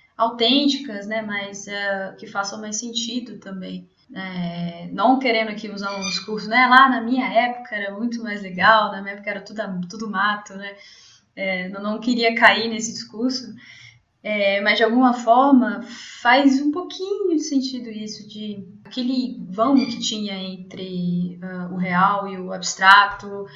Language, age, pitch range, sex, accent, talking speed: Portuguese, 20-39, 190-225 Hz, female, Brazilian, 160 wpm